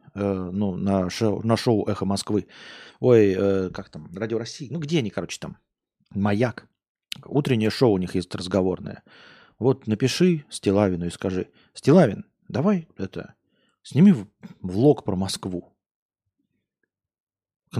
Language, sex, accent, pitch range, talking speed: Russian, male, native, 100-130 Hz, 125 wpm